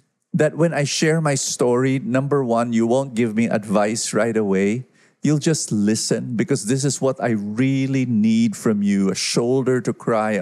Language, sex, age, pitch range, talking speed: English, male, 50-69, 115-180 Hz, 180 wpm